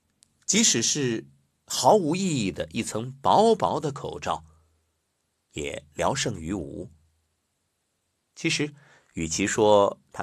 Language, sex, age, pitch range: Chinese, male, 50-69, 80-100 Hz